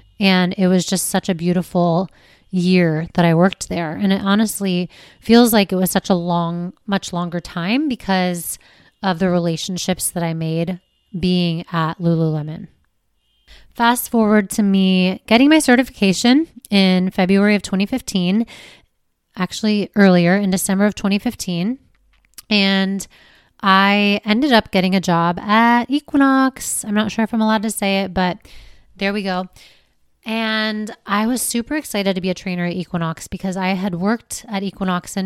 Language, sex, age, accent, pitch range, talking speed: English, female, 20-39, American, 175-215 Hz, 155 wpm